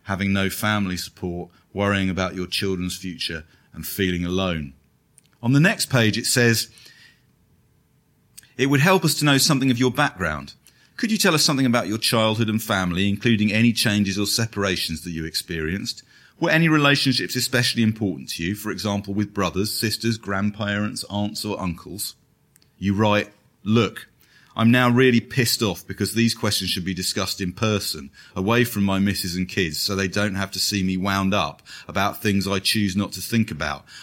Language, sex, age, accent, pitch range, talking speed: English, male, 30-49, British, 95-115 Hz, 180 wpm